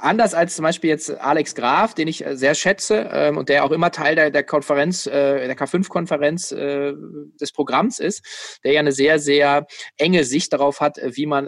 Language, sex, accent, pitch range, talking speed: German, male, German, 140-170 Hz, 200 wpm